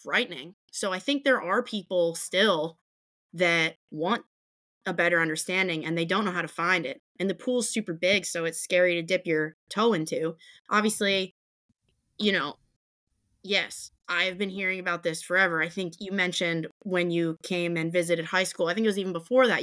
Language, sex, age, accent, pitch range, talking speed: English, female, 20-39, American, 170-195 Hz, 190 wpm